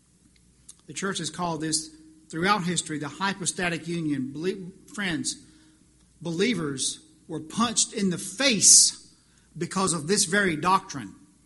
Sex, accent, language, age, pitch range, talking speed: male, American, English, 50-69, 150-195 Hz, 120 wpm